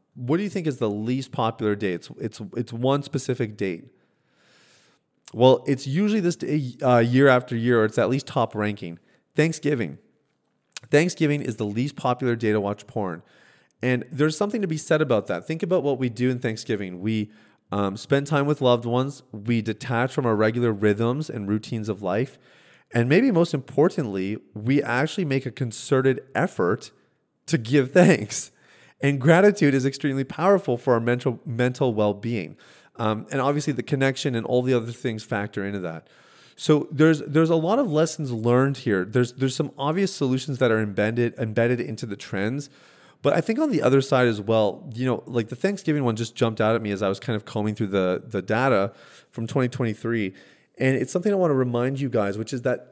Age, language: 30-49, English